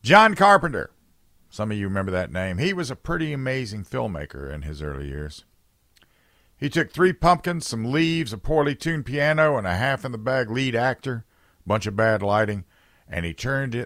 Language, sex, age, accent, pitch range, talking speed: English, male, 50-69, American, 95-140 Hz, 180 wpm